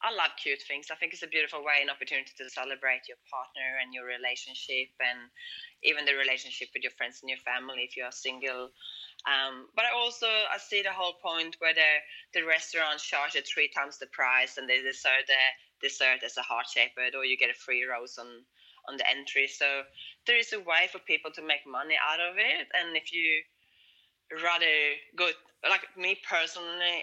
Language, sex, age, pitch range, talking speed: English, female, 20-39, 145-185 Hz, 205 wpm